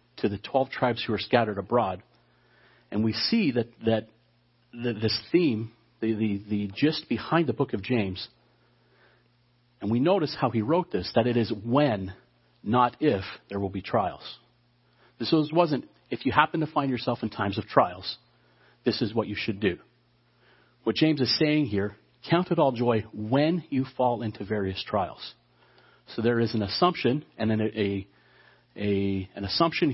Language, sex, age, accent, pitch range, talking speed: English, male, 40-59, American, 105-130 Hz, 175 wpm